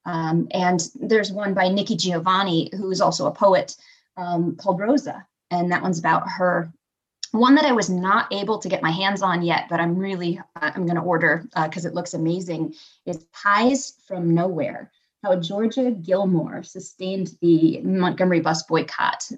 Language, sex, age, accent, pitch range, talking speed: English, female, 20-39, American, 165-200 Hz, 170 wpm